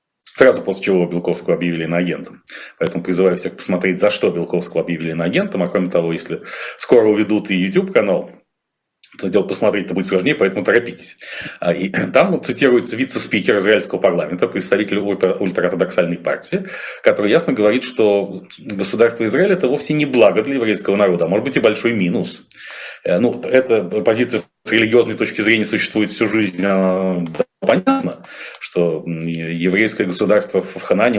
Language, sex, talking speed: Russian, male, 145 wpm